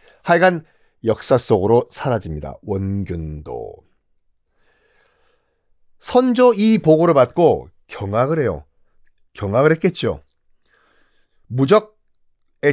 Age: 40-59